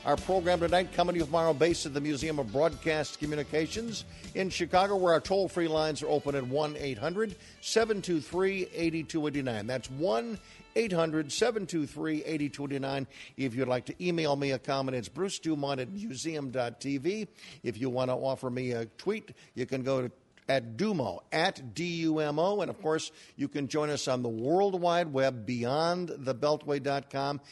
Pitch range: 130-160 Hz